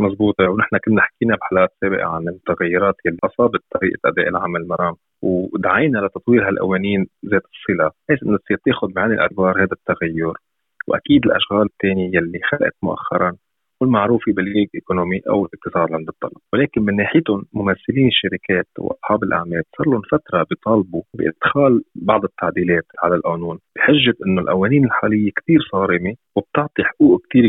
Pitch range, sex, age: 95-125 Hz, male, 30-49